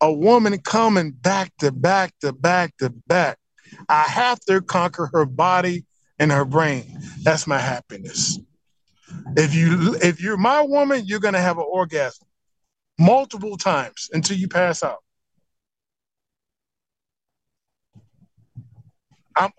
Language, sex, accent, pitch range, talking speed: English, male, American, 170-245 Hz, 130 wpm